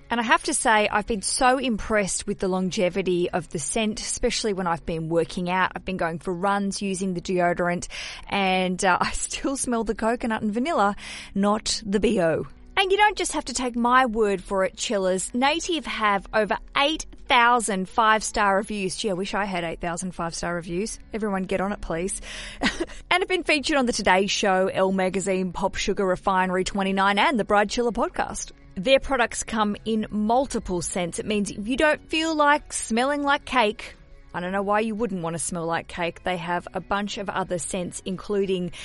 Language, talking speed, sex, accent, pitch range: English, 200 wpm, female, Australian, 185-235 Hz